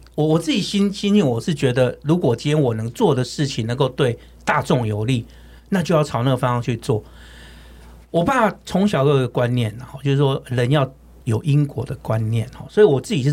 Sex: male